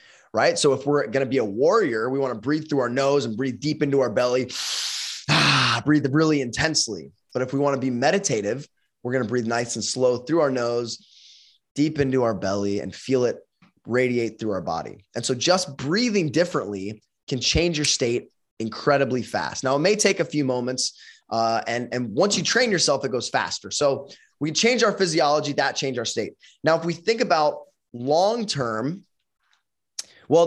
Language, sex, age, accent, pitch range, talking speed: English, male, 20-39, American, 125-155 Hz, 195 wpm